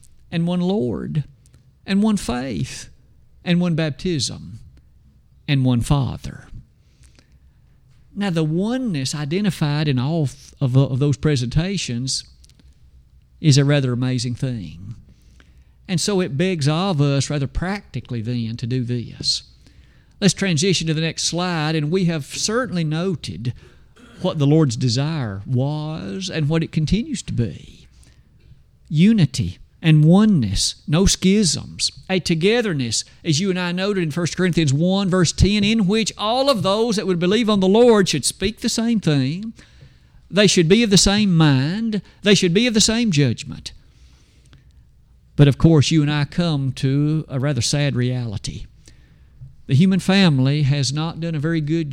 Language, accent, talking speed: English, American, 150 wpm